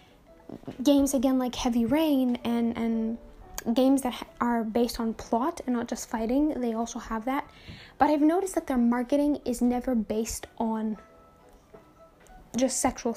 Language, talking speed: English, 150 wpm